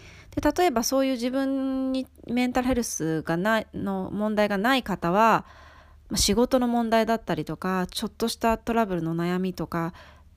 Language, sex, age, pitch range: Japanese, female, 20-39, 150-225 Hz